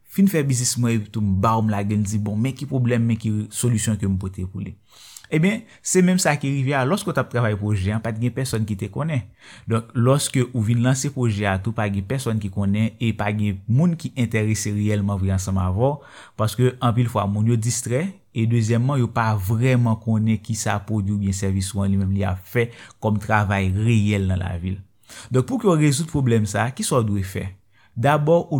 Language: French